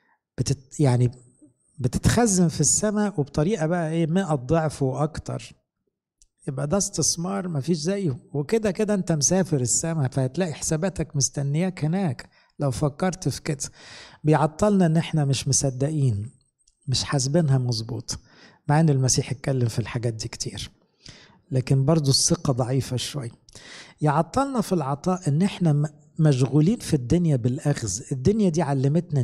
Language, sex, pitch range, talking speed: English, male, 140-180 Hz, 125 wpm